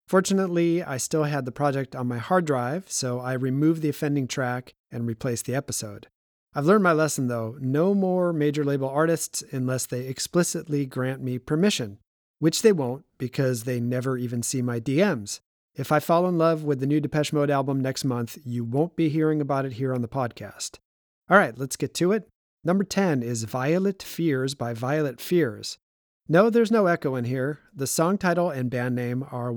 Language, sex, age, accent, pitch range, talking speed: English, male, 40-59, American, 125-165 Hz, 195 wpm